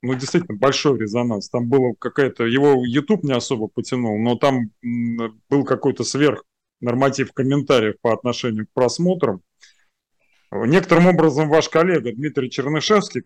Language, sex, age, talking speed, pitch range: Russian, male, 30-49, 130 wpm, 120-145 Hz